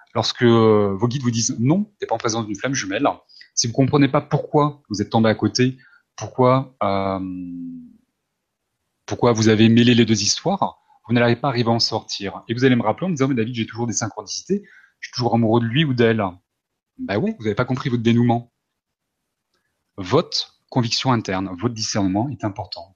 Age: 20-39